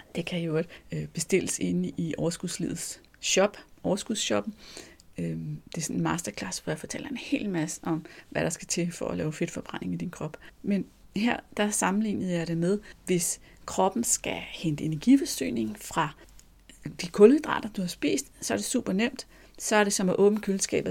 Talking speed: 170 wpm